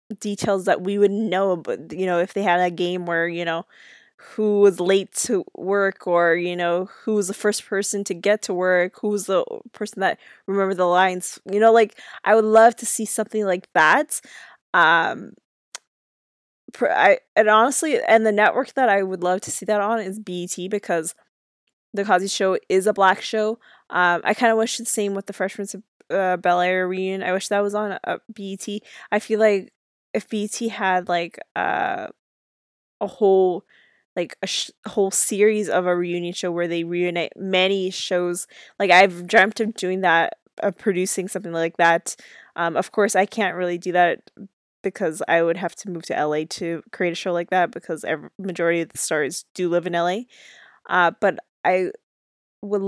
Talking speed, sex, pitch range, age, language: 195 wpm, female, 180-210 Hz, 20-39, English